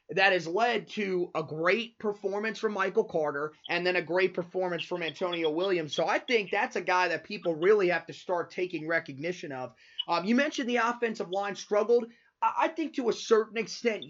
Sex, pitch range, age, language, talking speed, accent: male, 165-210 Hz, 30-49, English, 195 wpm, American